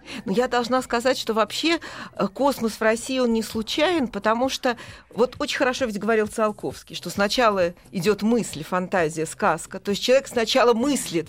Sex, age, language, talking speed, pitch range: female, 40-59, Russian, 165 wpm, 215-275 Hz